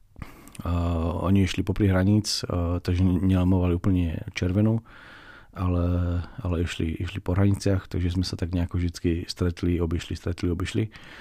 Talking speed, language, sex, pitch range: 140 wpm, Slovak, male, 90-100 Hz